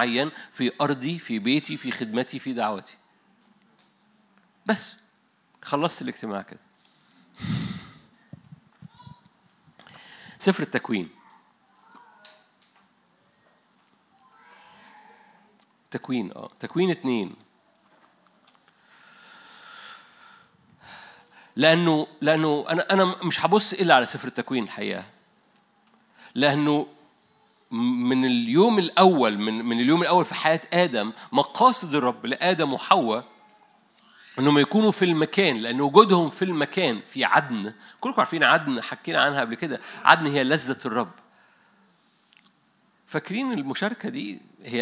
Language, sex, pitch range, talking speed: Arabic, male, 145-210 Hz, 90 wpm